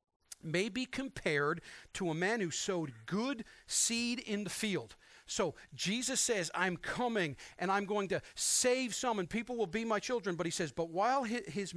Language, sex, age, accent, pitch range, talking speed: English, male, 40-59, American, 165-220 Hz, 185 wpm